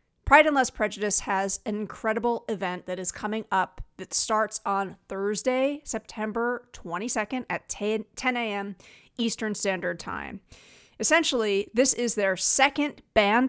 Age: 30-49